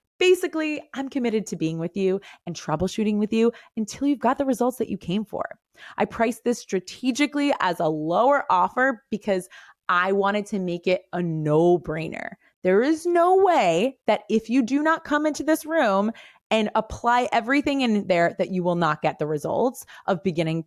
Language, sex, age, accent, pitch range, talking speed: English, female, 20-39, American, 180-255 Hz, 185 wpm